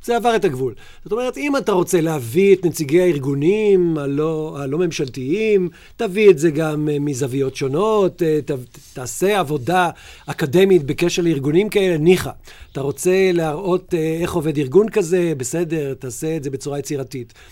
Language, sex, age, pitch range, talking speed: Hebrew, male, 50-69, 155-200 Hz, 145 wpm